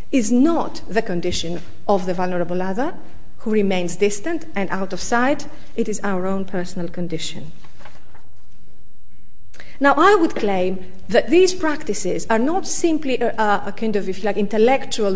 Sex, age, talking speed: female, 40-59, 155 wpm